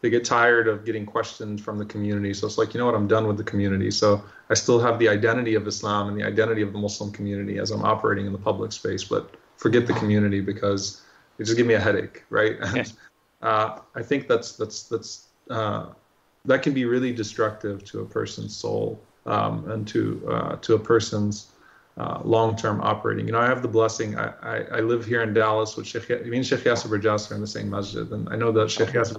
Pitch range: 105-115 Hz